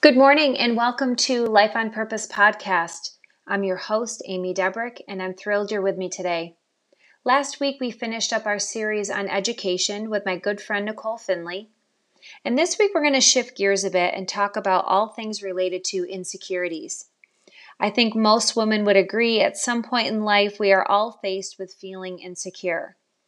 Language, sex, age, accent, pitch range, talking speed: English, female, 30-49, American, 185-235 Hz, 185 wpm